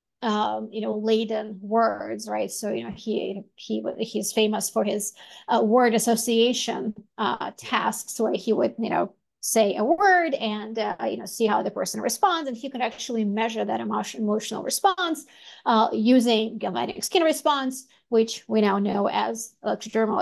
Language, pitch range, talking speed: English, 220-275 Hz, 170 wpm